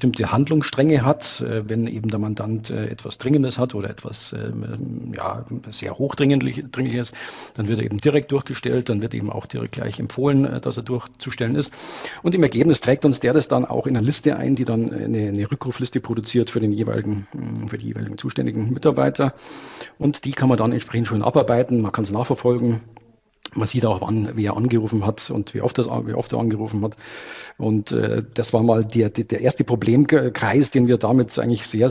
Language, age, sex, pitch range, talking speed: German, 50-69, male, 110-130 Hz, 190 wpm